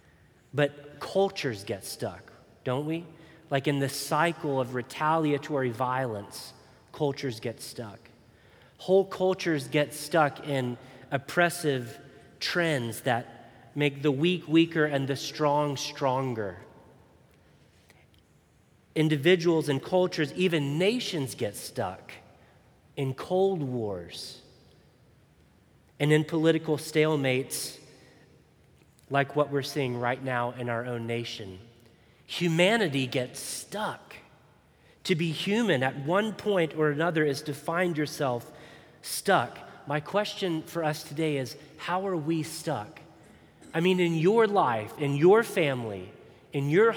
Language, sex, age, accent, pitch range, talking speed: English, male, 30-49, American, 135-170 Hz, 120 wpm